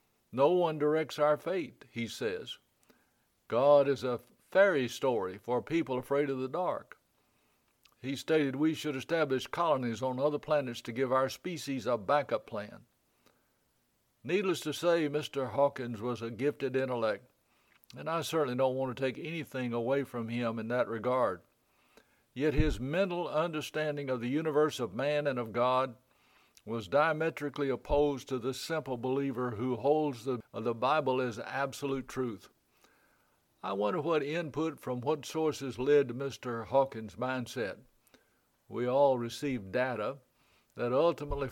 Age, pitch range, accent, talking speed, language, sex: 60-79, 125-150 Hz, American, 150 wpm, English, male